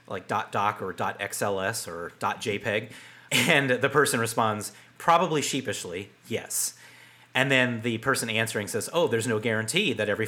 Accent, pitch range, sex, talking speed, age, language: American, 105-130 Hz, male, 145 wpm, 30-49, English